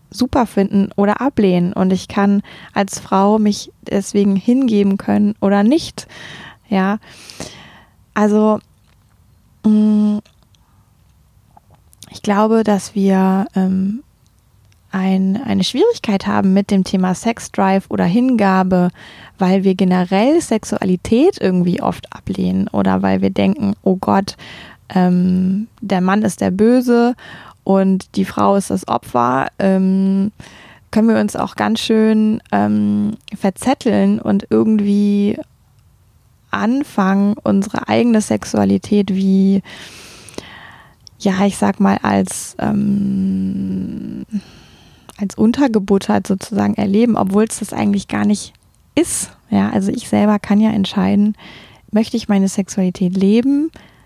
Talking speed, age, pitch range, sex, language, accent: 115 wpm, 20-39, 190-215 Hz, female, German, German